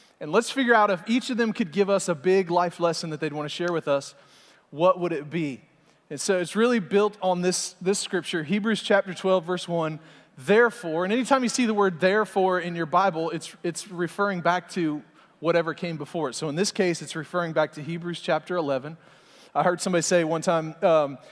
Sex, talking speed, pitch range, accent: male, 220 wpm, 165-195 Hz, American